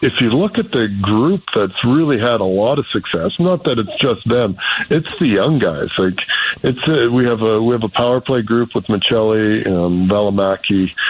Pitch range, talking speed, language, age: 100-125 Hz, 205 wpm, English, 60-79